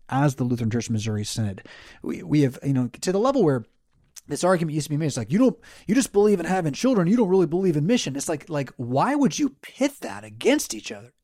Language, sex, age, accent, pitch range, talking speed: English, male, 30-49, American, 125-190 Hz, 260 wpm